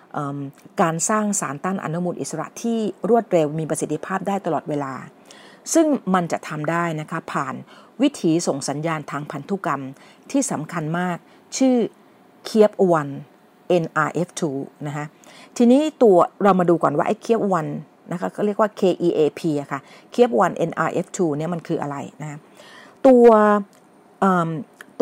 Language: Thai